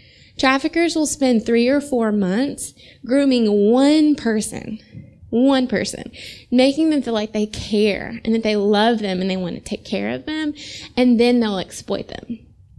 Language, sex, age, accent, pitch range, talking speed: English, female, 20-39, American, 210-275 Hz, 170 wpm